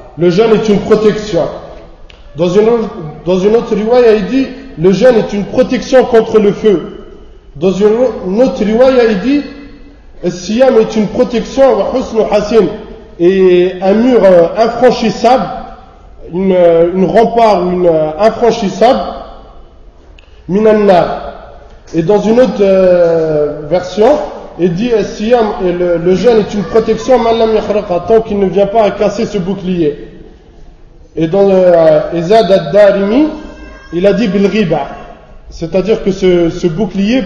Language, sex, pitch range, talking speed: French, male, 180-225 Hz, 120 wpm